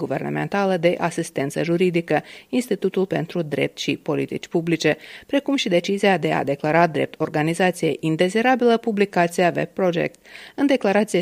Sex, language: female, Romanian